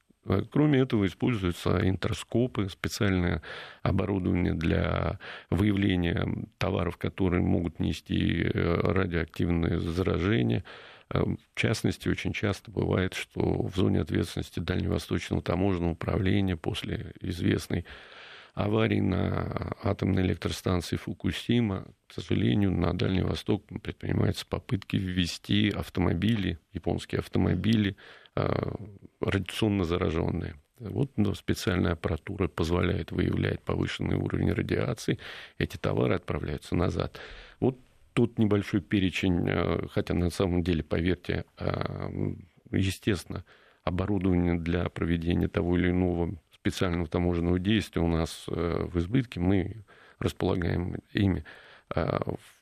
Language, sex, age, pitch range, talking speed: Russian, male, 40-59, 85-105 Hz, 95 wpm